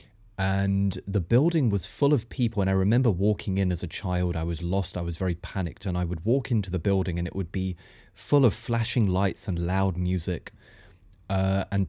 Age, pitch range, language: 20-39, 90-110 Hz, English